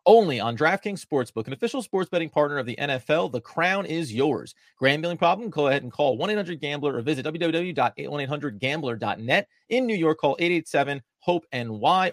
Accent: American